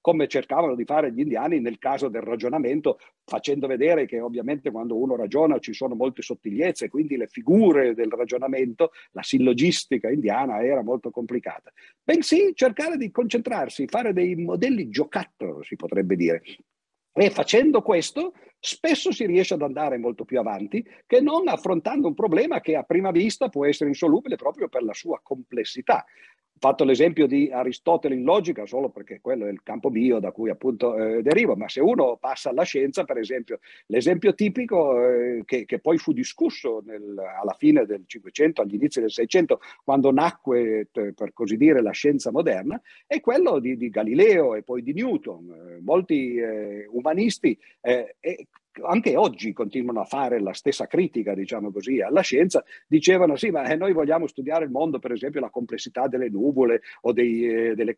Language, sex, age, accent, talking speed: Italian, male, 50-69, native, 170 wpm